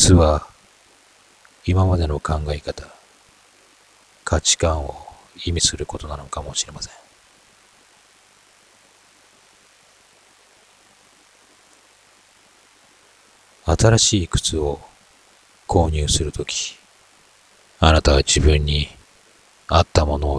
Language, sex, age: Japanese, male, 40-59